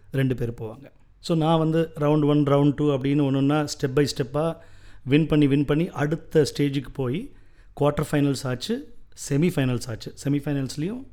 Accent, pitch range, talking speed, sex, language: native, 115-150 Hz, 150 wpm, male, Tamil